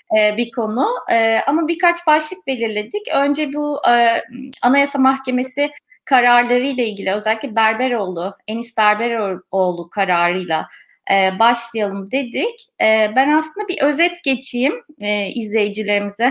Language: Turkish